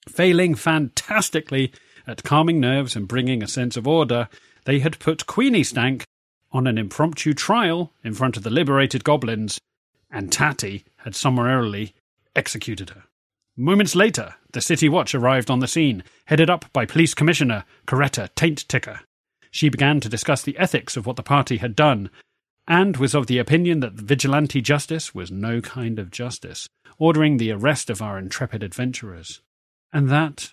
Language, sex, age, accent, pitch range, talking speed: English, male, 40-59, British, 115-150 Hz, 165 wpm